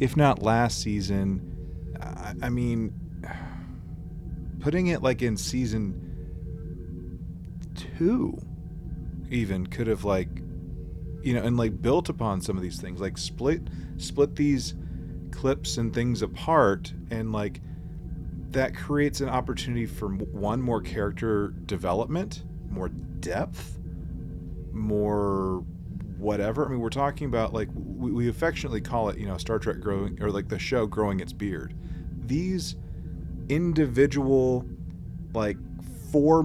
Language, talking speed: English, 125 wpm